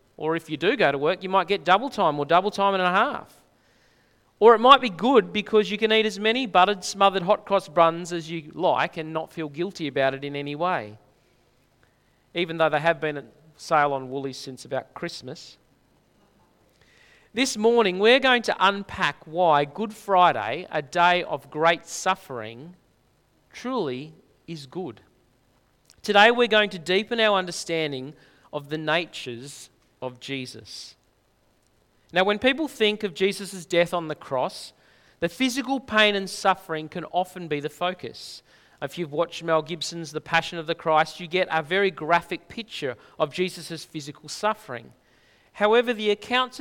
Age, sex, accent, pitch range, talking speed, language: 40-59, male, Australian, 150-200 Hz, 165 wpm, English